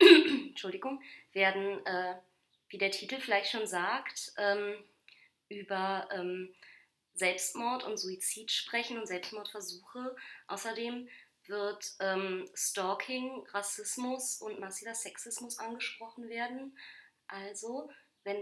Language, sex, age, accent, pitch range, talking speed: German, female, 20-39, German, 195-255 Hz, 100 wpm